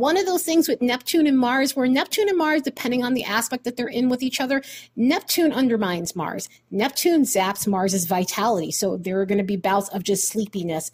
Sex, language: female, English